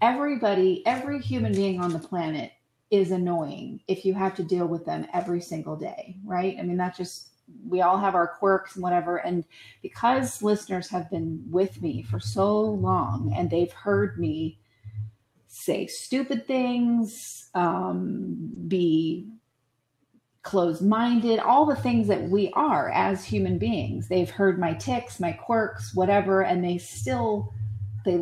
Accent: American